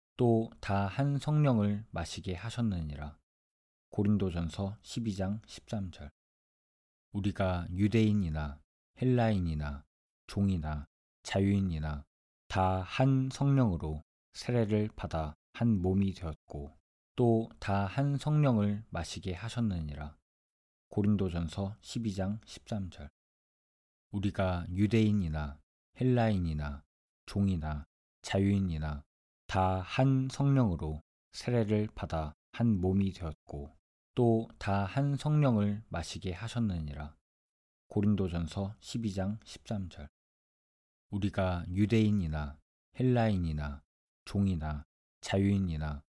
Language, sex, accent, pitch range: Korean, male, native, 75-110 Hz